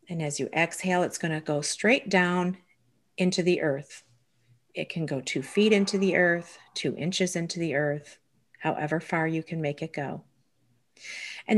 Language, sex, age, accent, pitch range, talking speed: English, female, 40-59, American, 155-205 Hz, 170 wpm